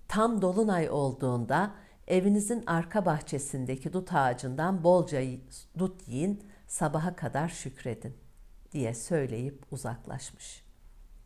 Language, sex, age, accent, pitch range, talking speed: Turkish, female, 60-79, native, 120-170 Hz, 90 wpm